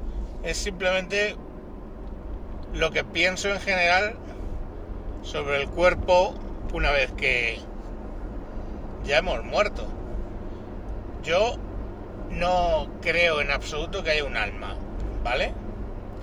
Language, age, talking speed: Spanish, 60-79, 95 wpm